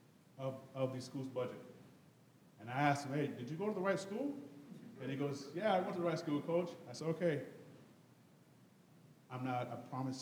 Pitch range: 125-140 Hz